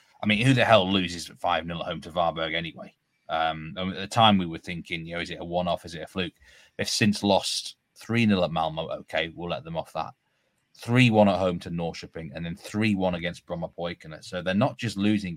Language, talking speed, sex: English, 220 wpm, male